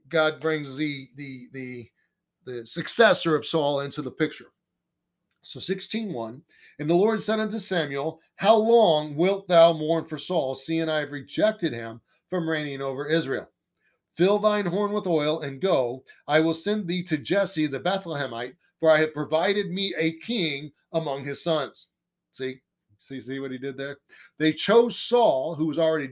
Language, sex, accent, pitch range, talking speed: English, male, American, 145-185 Hz, 170 wpm